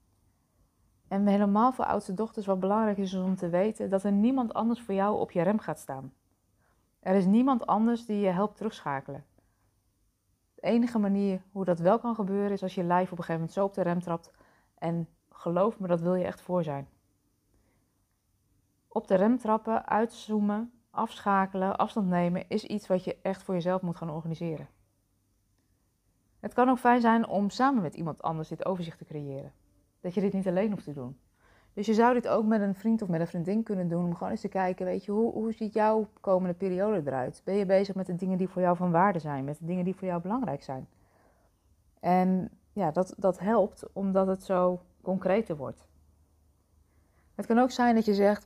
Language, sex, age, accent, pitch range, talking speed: Dutch, female, 20-39, Dutch, 140-200 Hz, 205 wpm